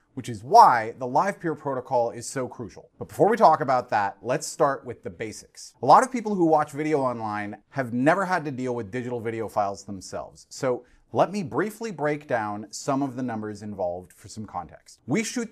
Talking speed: 215 wpm